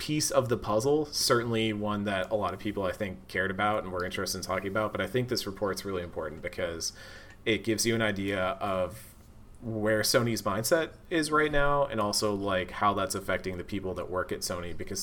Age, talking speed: 30-49, 215 wpm